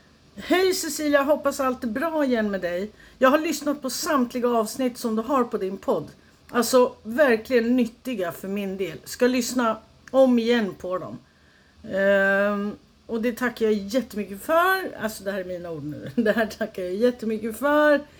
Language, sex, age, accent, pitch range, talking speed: Swedish, female, 60-79, native, 205-255 Hz, 175 wpm